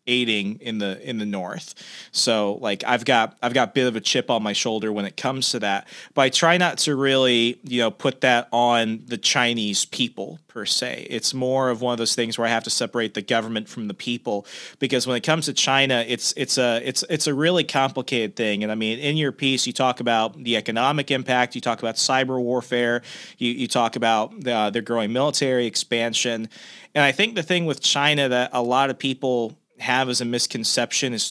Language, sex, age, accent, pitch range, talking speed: English, male, 30-49, American, 115-135 Hz, 220 wpm